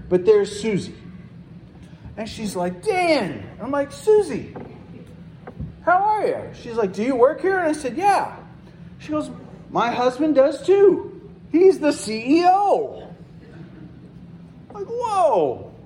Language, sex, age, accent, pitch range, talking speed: English, male, 40-59, American, 165-255 Hz, 135 wpm